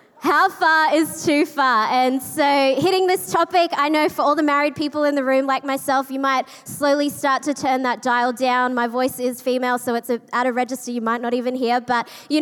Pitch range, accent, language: 245-290 Hz, Australian, English